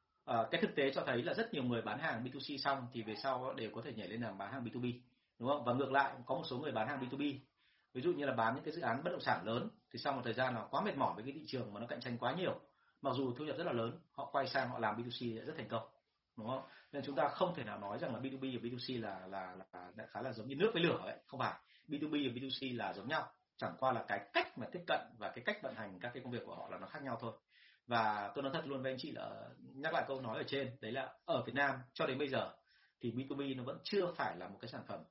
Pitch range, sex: 115-140 Hz, male